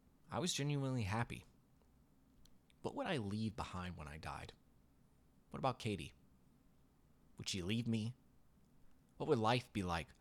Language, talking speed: English, 140 wpm